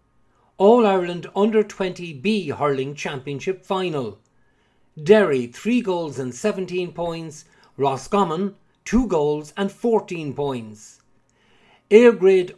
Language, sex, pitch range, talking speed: English, male, 135-195 Hz, 90 wpm